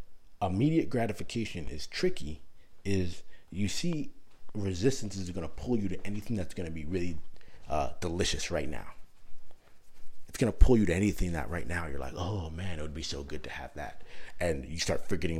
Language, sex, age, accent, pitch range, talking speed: English, male, 30-49, American, 80-100 Hz, 195 wpm